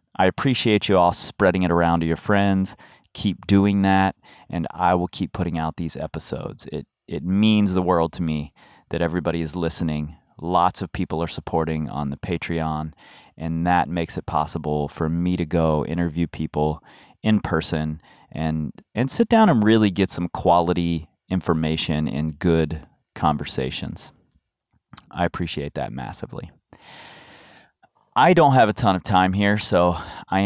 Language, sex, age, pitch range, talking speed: English, male, 30-49, 80-95 Hz, 160 wpm